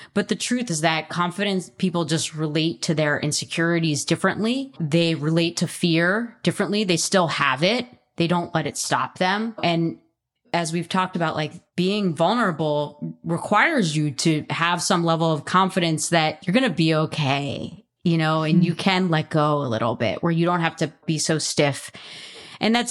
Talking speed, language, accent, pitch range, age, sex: 185 wpm, English, American, 155-190 Hz, 20-39, female